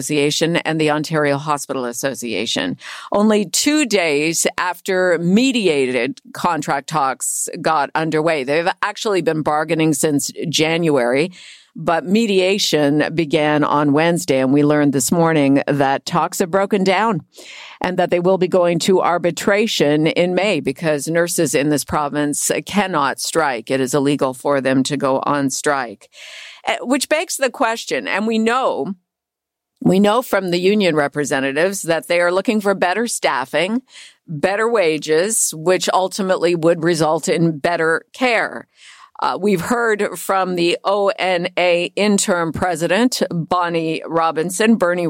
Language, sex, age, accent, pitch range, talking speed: English, female, 50-69, American, 150-200 Hz, 135 wpm